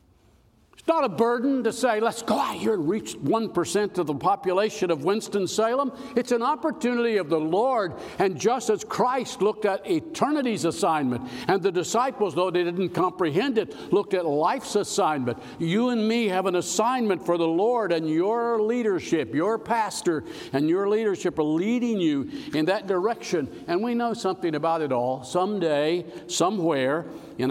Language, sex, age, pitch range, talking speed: English, male, 60-79, 150-225 Hz, 170 wpm